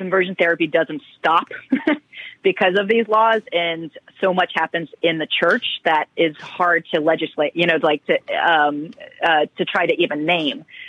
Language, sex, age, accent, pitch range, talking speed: English, female, 30-49, American, 160-200 Hz, 170 wpm